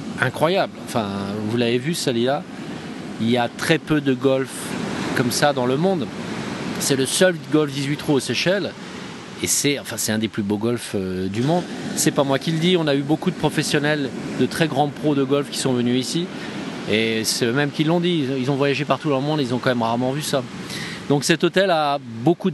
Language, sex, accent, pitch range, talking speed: French, male, French, 125-170 Hz, 225 wpm